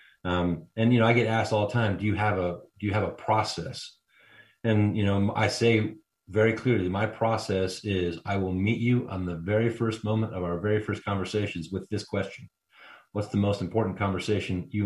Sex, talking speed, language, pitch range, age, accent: male, 210 wpm, English, 95-115 Hz, 30-49, American